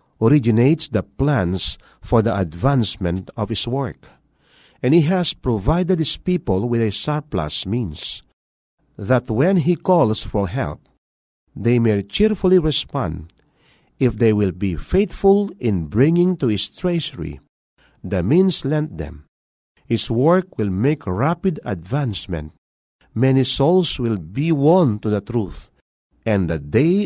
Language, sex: Filipino, male